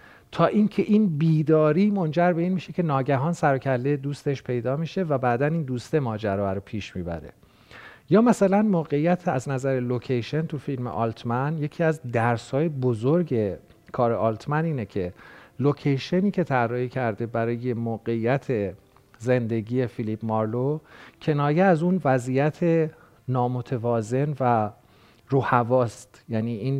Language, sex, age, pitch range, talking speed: Persian, male, 40-59, 120-150 Hz, 130 wpm